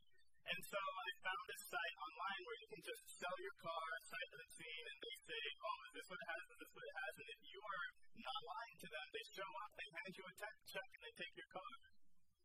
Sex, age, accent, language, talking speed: male, 40-59, American, English, 255 wpm